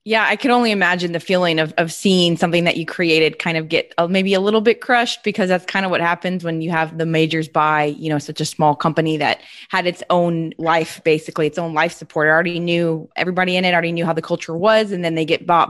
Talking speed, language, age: 260 wpm, English, 20-39